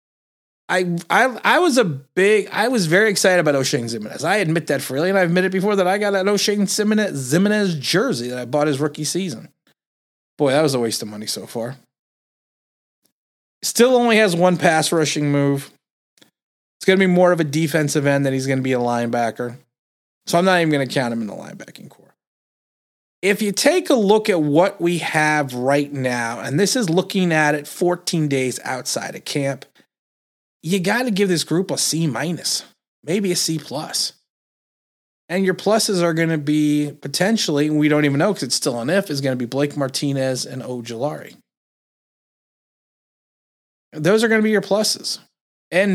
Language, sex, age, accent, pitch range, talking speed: English, male, 30-49, American, 140-195 Hz, 190 wpm